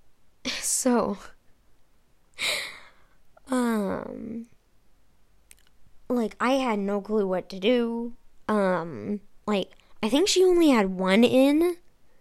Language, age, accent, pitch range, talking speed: English, 10-29, American, 205-275 Hz, 95 wpm